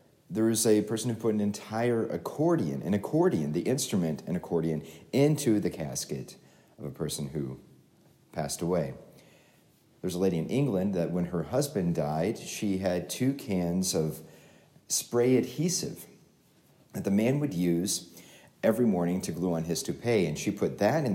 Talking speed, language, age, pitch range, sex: 165 wpm, English, 40-59, 85-120 Hz, male